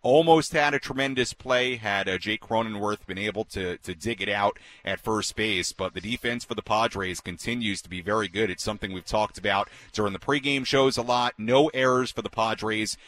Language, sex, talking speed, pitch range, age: English, male, 205 wpm, 105-140 Hz, 40-59